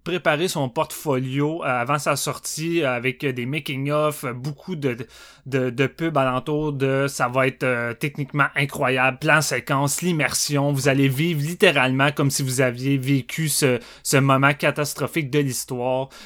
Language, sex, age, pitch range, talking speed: French, male, 20-39, 130-160 Hz, 145 wpm